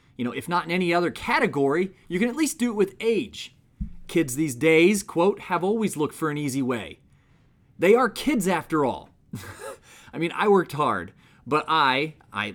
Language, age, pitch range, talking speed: English, 30-49, 125-185 Hz, 190 wpm